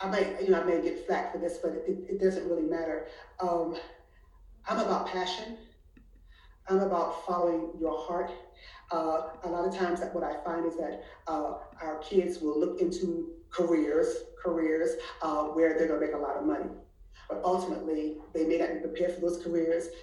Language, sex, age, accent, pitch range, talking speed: English, female, 40-59, American, 170-200 Hz, 185 wpm